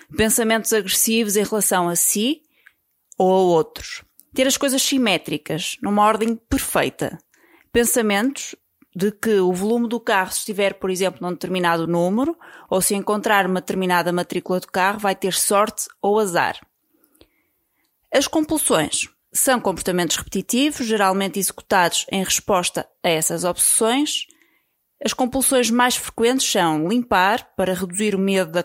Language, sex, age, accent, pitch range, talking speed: Portuguese, female, 20-39, Brazilian, 180-225 Hz, 135 wpm